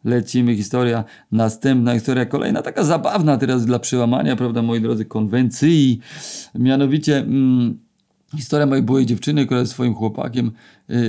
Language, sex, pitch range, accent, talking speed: Polish, male, 115-130 Hz, native, 135 wpm